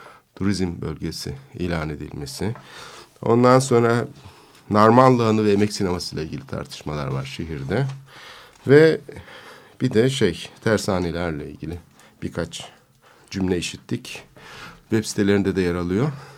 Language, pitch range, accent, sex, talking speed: Turkish, 90-130 Hz, native, male, 105 wpm